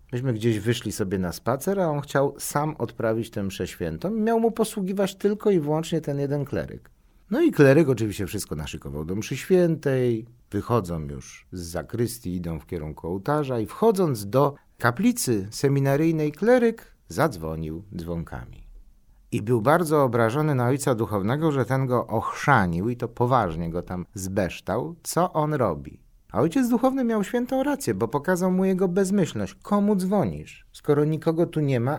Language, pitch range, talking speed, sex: Polish, 110-160 Hz, 160 wpm, male